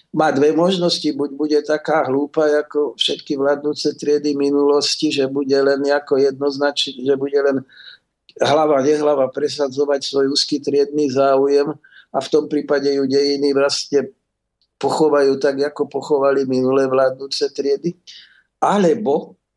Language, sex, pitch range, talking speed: Slovak, male, 140-170 Hz, 130 wpm